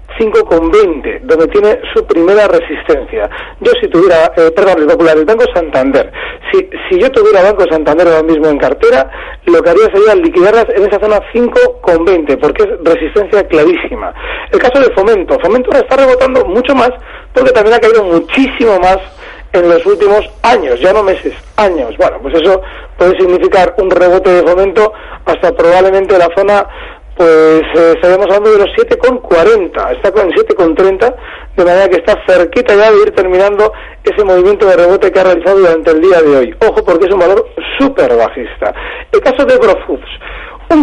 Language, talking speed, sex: Spanish, 170 wpm, male